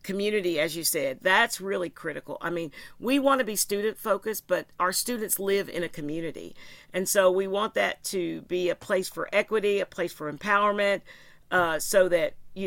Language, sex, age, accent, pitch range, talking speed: English, female, 50-69, American, 175-210 Hz, 190 wpm